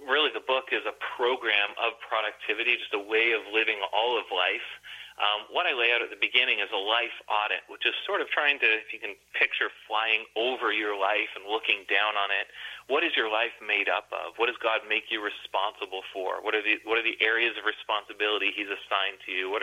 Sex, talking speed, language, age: male, 230 wpm, English, 30-49